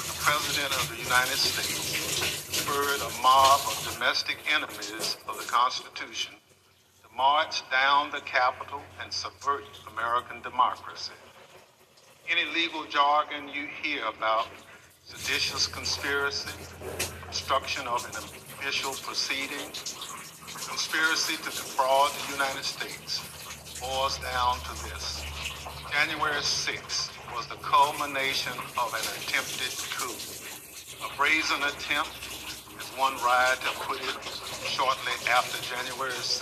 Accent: American